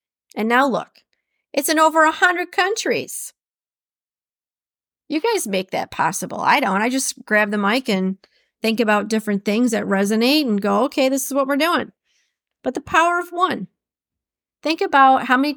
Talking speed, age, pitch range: 170 wpm, 40-59, 210-295 Hz